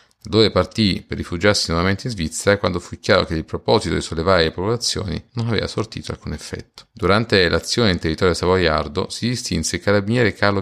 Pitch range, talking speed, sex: 85-110 Hz, 180 wpm, male